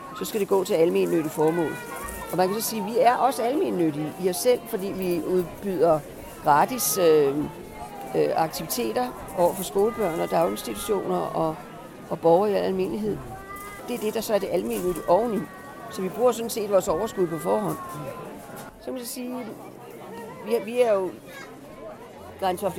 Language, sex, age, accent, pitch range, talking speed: Danish, female, 50-69, native, 170-220 Hz, 165 wpm